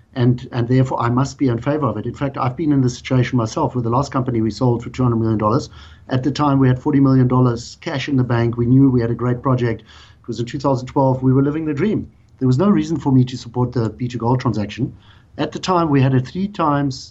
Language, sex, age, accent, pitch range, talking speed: English, male, 50-69, German, 110-130 Hz, 255 wpm